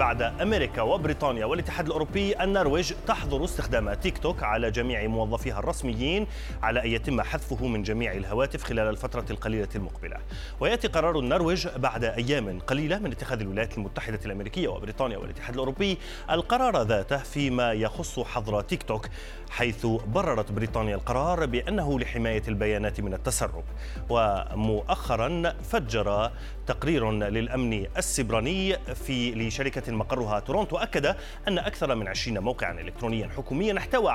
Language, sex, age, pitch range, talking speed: Arabic, male, 30-49, 110-150 Hz, 130 wpm